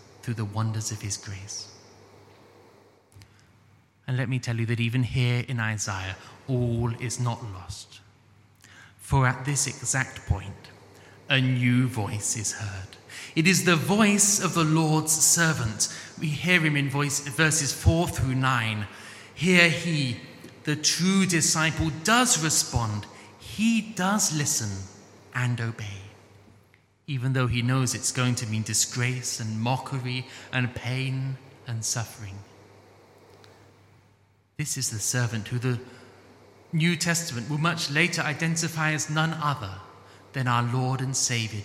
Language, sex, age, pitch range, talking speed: English, male, 30-49, 105-145 Hz, 135 wpm